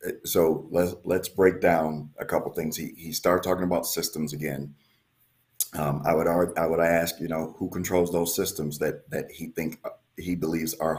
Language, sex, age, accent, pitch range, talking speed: English, male, 40-59, American, 80-100 Hz, 195 wpm